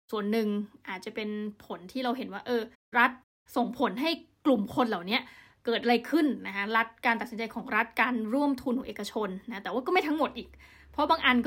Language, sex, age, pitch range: Thai, female, 20-39, 215-260 Hz